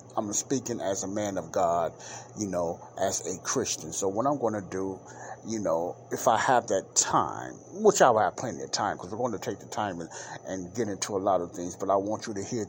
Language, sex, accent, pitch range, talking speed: English, male, American, 95-120 Hz, 250 wpm